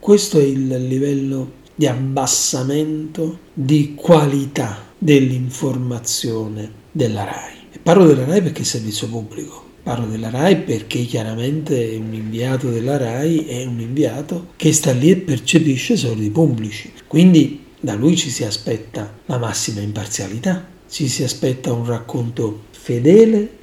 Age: 40-59